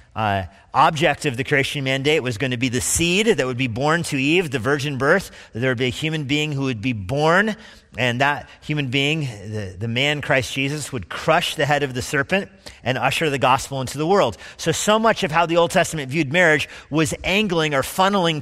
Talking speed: 220 wpm